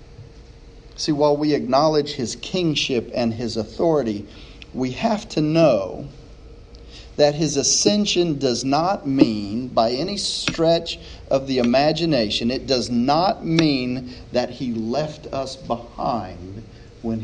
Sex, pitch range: male, 110-155 Hz